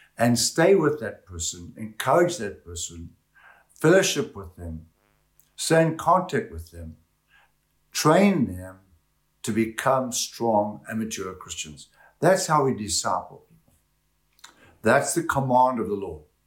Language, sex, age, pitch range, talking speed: English, male, 60-79, 85-130 Hz, 130 wpm